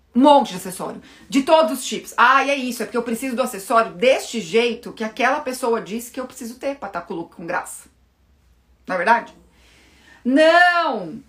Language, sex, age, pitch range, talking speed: Portuguese, female, 30-49, 170-280 Hz, 200 wpm